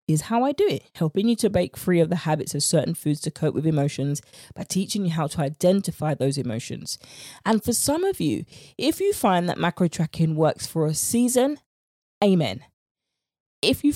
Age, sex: 20-39, female